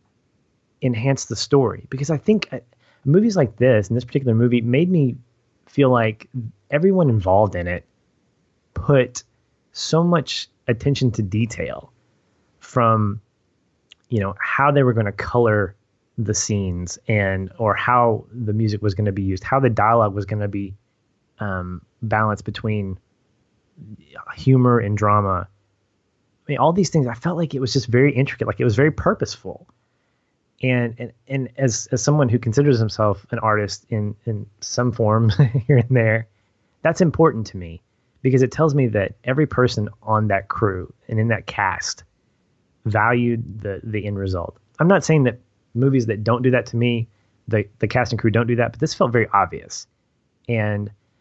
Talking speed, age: 170 wpm, 30-49